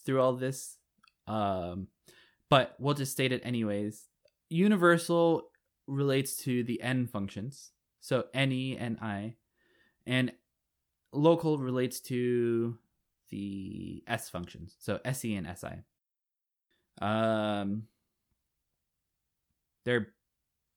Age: 20-39